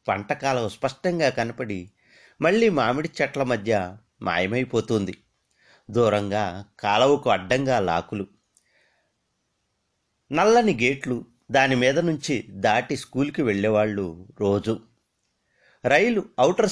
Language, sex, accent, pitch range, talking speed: Telugu, male, native, 105-150 Hz, 85 wpm